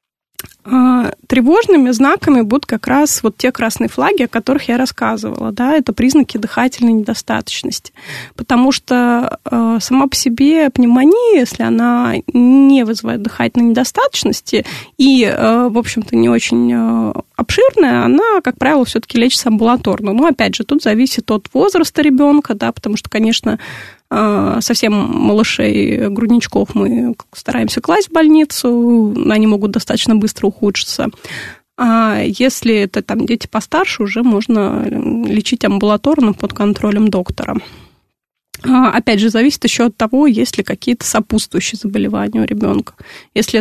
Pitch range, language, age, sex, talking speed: 215-260 Hz, Russian, 20-39, female, 130 wpm